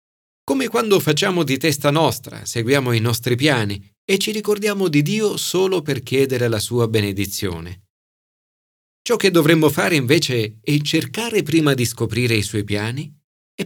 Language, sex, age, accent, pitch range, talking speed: Italian, male, 40-59, native, 105-150 Hz, 155 wpm